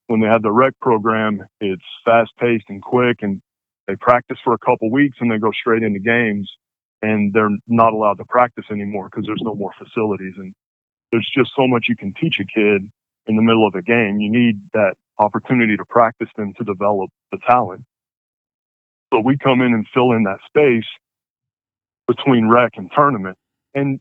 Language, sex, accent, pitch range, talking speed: English, male, American, 105-120 Hz, 190 wpm